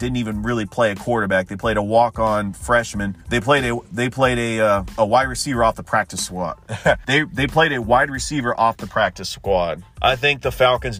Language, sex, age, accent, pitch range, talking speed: English, male, 40-59, American, 110-135 Hz, 215 wpm